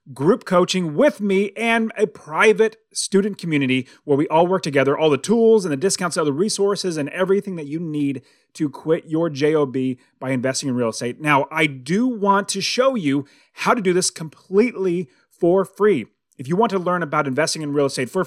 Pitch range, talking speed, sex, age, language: 150-200 Hz, 205 wpm, male, 30-49, English